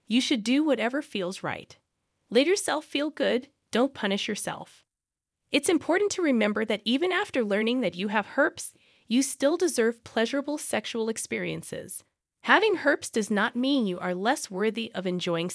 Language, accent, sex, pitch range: English, American, female, 185-260 Hz